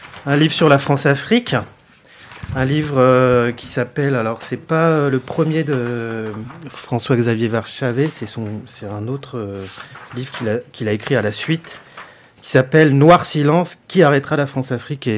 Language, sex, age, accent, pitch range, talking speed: French, male, 30-49, French, 110-140 Hz, 170 wpm